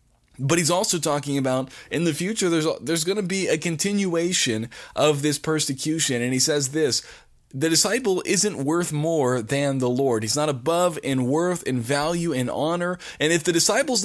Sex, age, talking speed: male, 20-39, 200 wpm